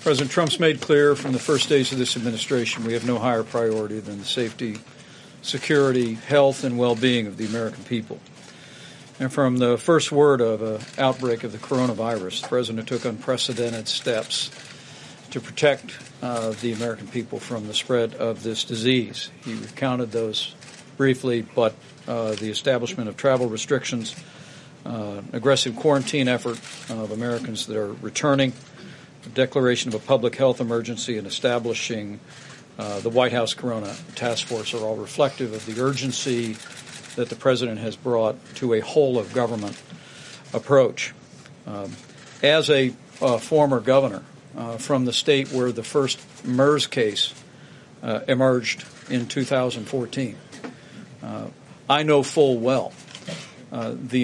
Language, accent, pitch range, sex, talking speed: English, American, 115-135 Hz, male, 145 wpm